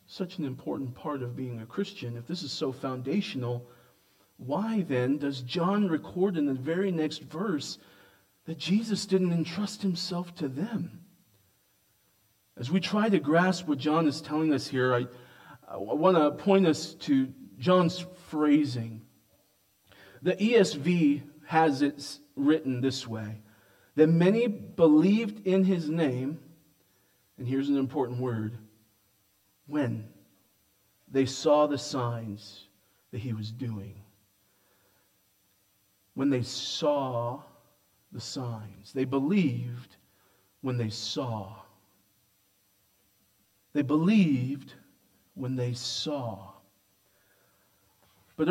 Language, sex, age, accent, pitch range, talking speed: English, male, 40-59, American, 95-155 Hz, 115 wpm